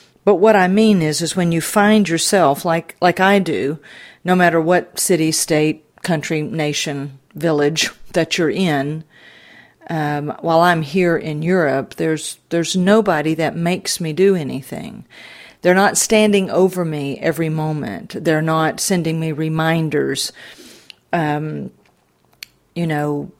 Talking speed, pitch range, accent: 140 wpm, 150-180 Hz, American